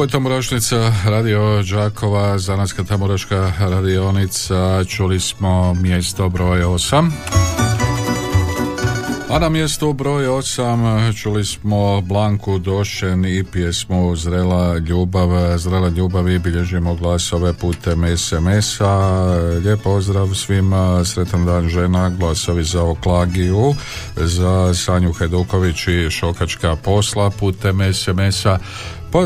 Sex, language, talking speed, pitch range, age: male, Croatian, 105 wpm, 85-105 Hz, 50-69